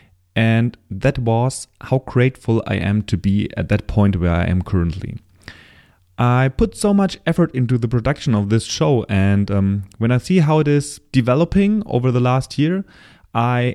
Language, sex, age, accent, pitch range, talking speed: English, male, 30-49, German, 100-140 Hz, 180 wpm